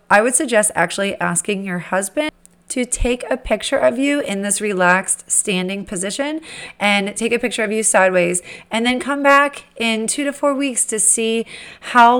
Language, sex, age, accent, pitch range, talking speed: English, female, 30-49, American, 185-230 Hz, 180 wpm